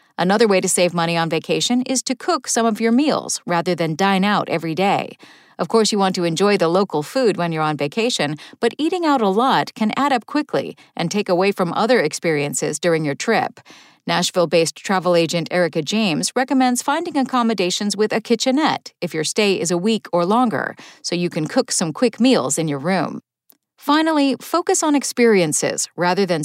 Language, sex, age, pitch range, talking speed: English, female, 40-59, 175-245 Hz, 195 wpm